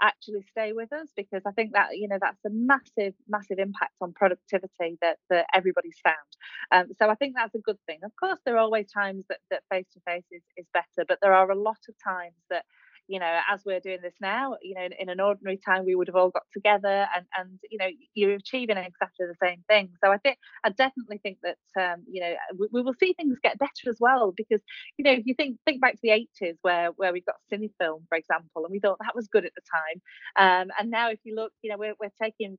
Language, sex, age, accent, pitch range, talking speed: English, female, 30-49, British, 185-220 Hz, 250 wpm